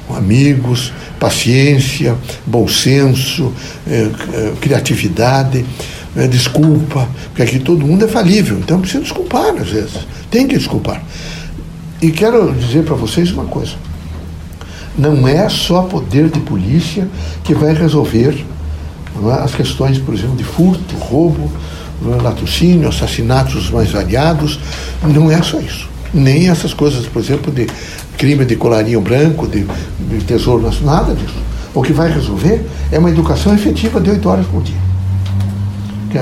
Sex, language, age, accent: male, Portuguese, 60-79, Brazilian